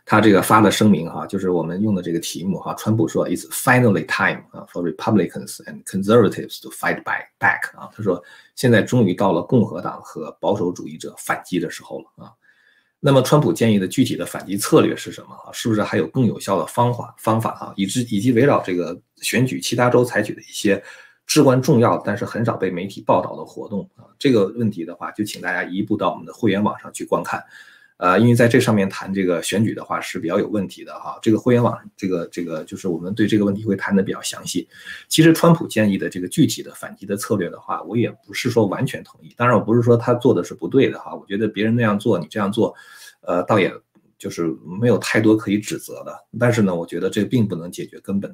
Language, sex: Chinese, male